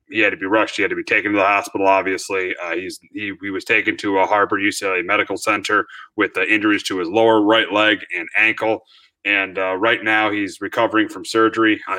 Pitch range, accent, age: 110-130 Hz, American, 30-49